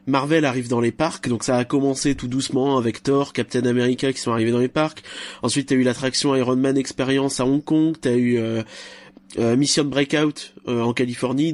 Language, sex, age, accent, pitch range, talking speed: French, male, 20-39, French, 125-160 Hz, 210 wpm